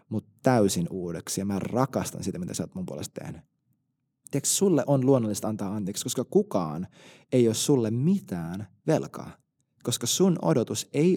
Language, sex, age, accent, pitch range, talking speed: Finnish, male, 20-39, native, 105-140 Hz, 155 wpm